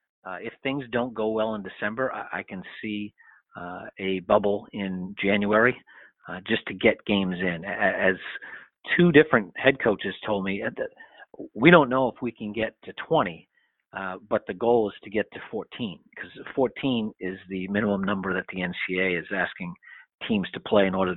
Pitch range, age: 90-110 Hz, 40-59